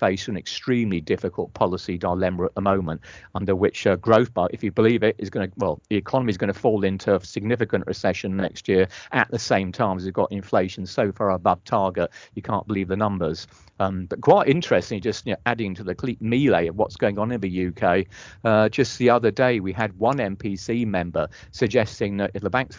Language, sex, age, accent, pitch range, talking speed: English, male, 40-59, British, 95-120 Hz, 220 wpm